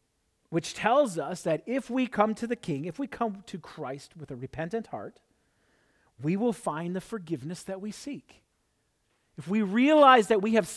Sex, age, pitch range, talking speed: male, 40-59, 130-215 Hz, 185 wpm